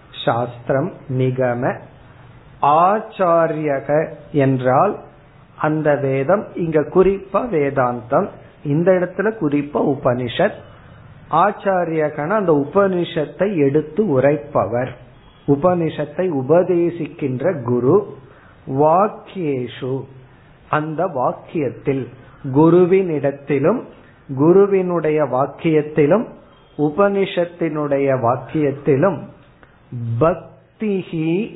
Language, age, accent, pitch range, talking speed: Tamil, 50-69, native, 130-160 Hz, 55 wpm